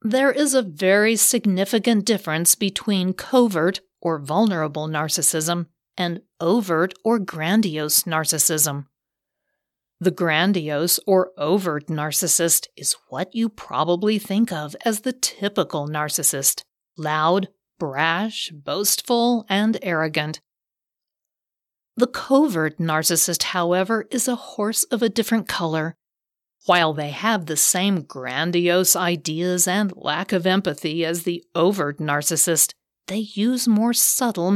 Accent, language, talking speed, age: American, English, 115 wpm, 50-69